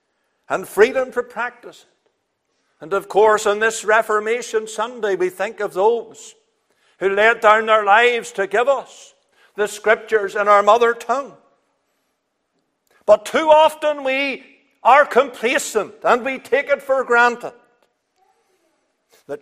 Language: English